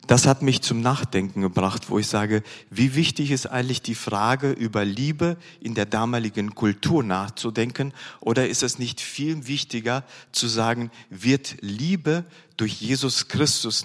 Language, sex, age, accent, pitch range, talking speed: German, male, 40-59, German, 110-140 Hz, 150 wpm